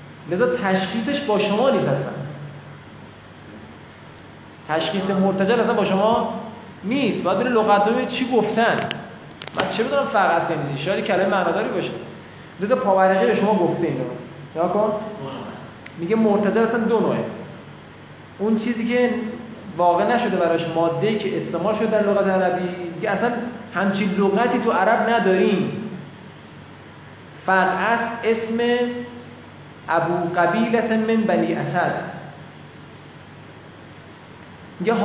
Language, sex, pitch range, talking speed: Persian, male, 175-225 Hz, 120 wpm